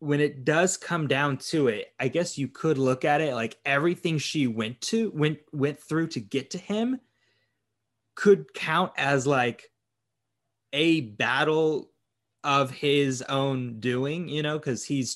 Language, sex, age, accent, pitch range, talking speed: English, male, 20-39, American, 115-155 Hz, 160 wpm